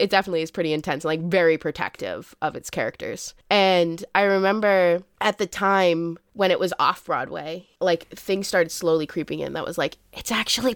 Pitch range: 165-205 Hz